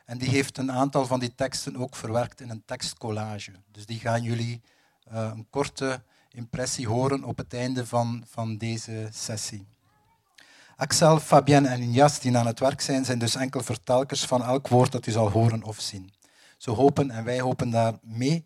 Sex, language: male, Dutch